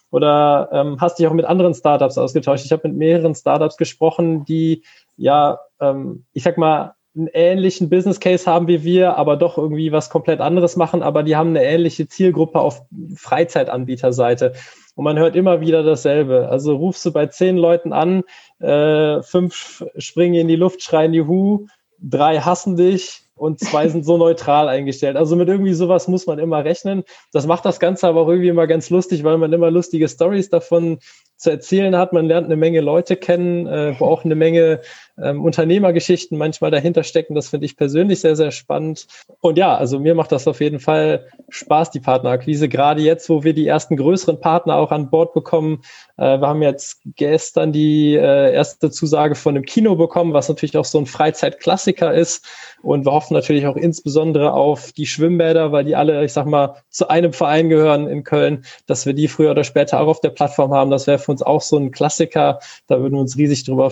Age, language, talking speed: 20-39, German, 200 wpm